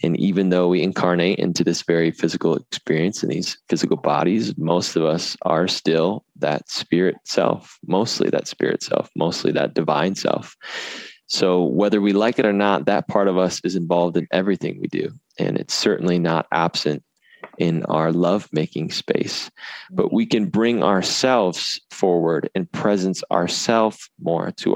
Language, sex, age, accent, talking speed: English, male, 20-39, American, 160 wpm